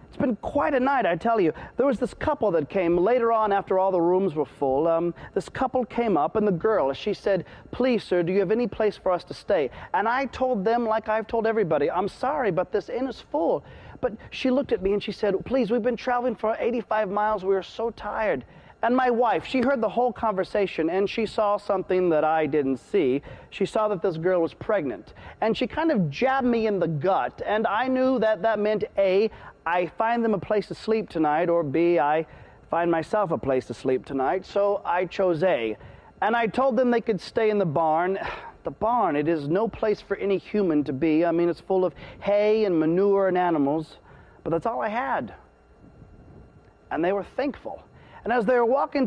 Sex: male